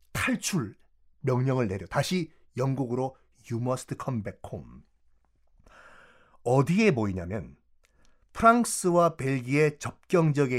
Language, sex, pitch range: Korean, male, 115-165 Hz